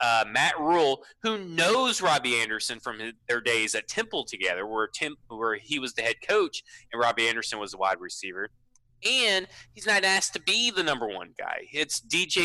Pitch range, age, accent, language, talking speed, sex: 120-165 Hz, 30-49, American, English, 200 wpm, male